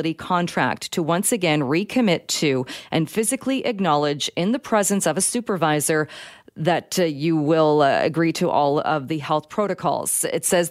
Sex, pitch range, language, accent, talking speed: female, 150-190 Hz, English, American, 160 wpm